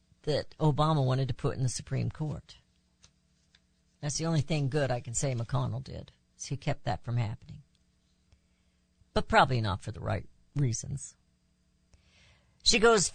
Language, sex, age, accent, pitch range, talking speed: English, female, 60-79, American, 135-205 Hz, 155 wpm